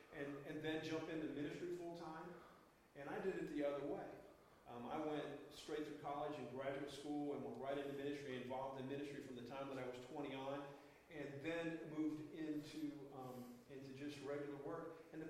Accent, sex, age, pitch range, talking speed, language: American, male, 40-59, 130-150 Hz, 195 wpm, English